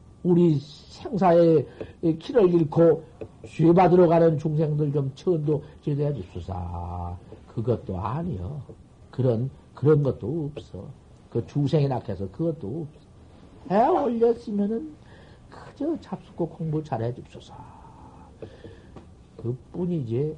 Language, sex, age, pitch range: Korean, male, 50-69, 115-180 Hz